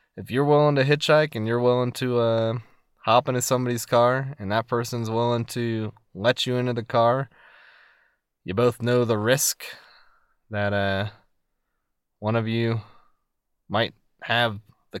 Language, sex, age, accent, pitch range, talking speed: English, male, 20-39, American, 100-130 Hz, 150 wpm